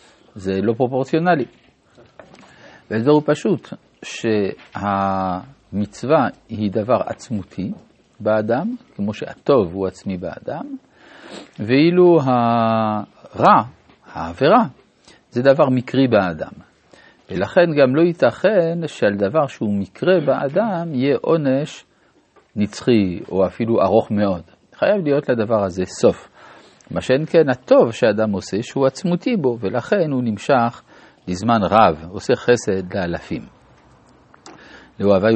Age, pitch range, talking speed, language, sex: 50-69, 100-150 Hz, 105 wpm, Hebrew, male